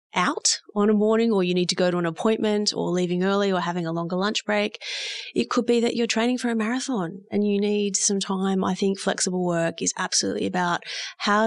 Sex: female